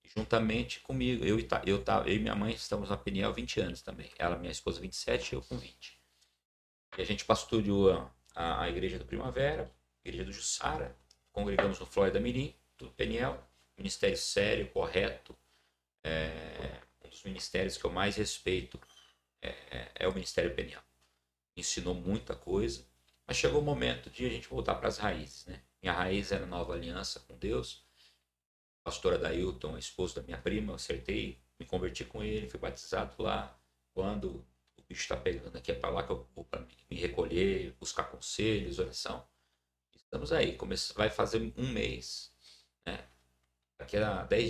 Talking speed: 165 wpm